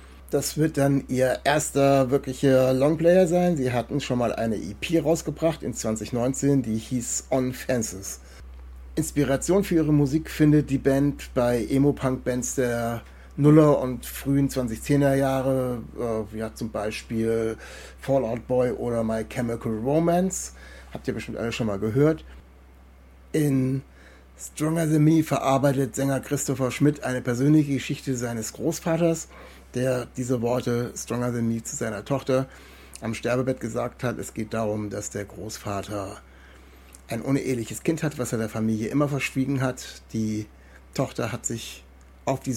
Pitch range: 105-135 Hz